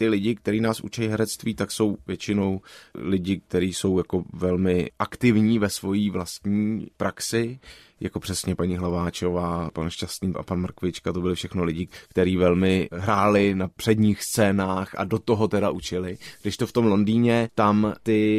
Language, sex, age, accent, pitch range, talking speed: Czech, male, 20-39, native, 95-110 Hz, 165 wpm